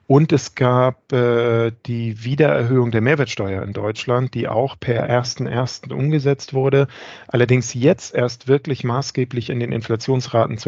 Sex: male